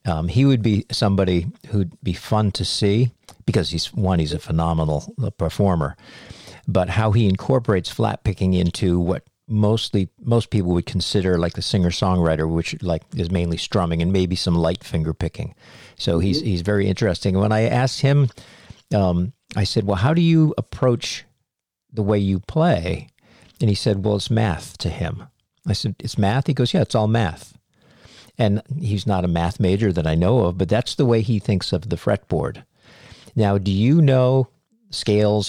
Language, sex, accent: English, male, American